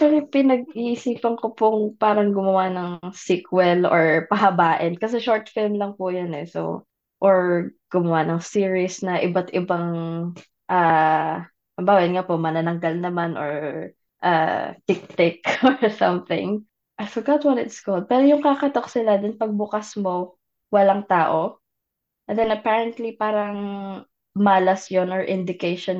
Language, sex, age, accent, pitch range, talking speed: Filipino, female, 20-39, native, 170-205 Hz, 135 wpm